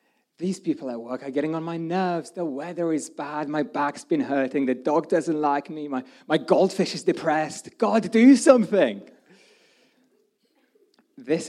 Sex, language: male, English